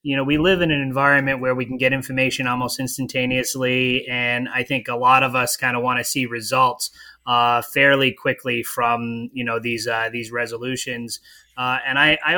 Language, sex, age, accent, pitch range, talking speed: English, male, 20-39, American, 120-145 Hz, 200 wpm